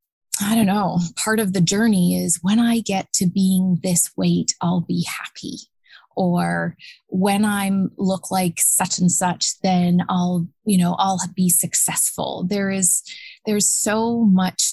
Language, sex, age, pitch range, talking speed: English, female, 20-39, 175-200 Hz, 155 wpm